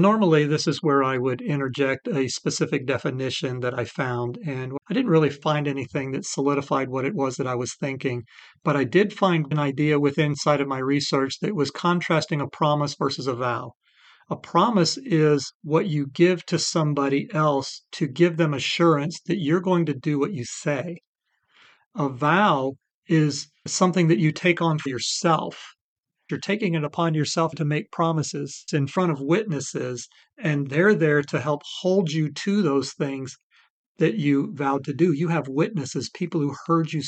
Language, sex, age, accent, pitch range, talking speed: English, male, 40-59, American, 140-170 Hz, 180 wpm